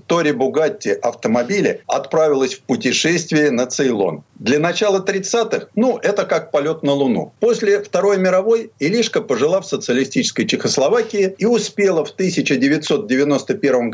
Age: 50-69